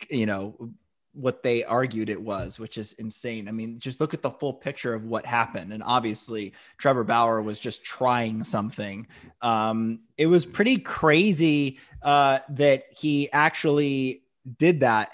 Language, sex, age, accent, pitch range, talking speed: English, male, 20-39, American, 120-155 Hz, 160 wpm